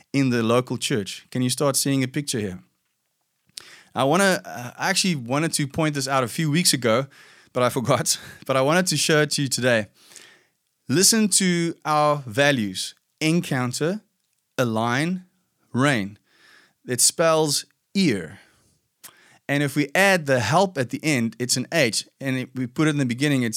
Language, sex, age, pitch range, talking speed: English, male, 20-39, 120-155 Hz, 170 wpm